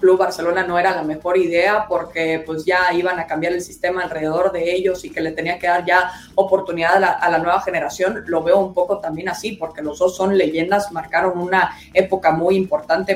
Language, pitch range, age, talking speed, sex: Spanish, 165-190 Hz, 20-39, 220 wpm, female